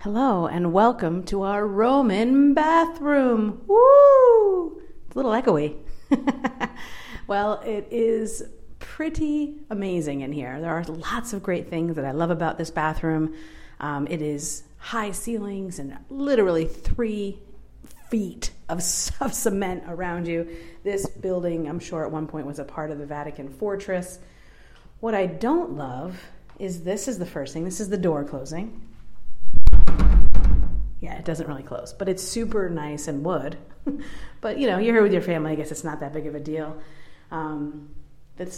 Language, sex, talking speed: English, female, 160 wpm